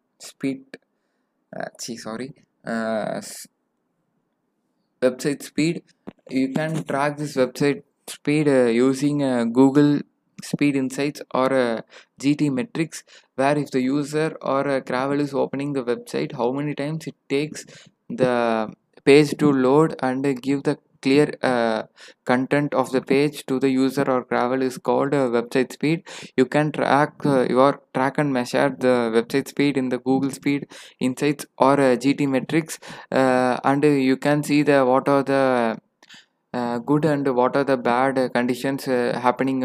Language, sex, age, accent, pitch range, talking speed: English, male, 20-39, Indian, 125-145 Hz, 160 wpm